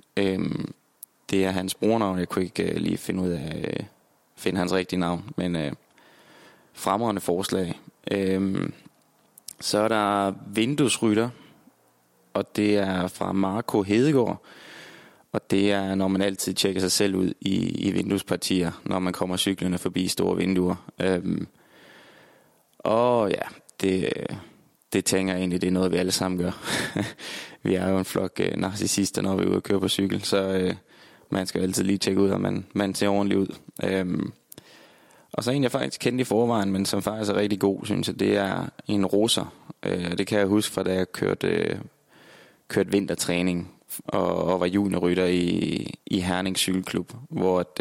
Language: English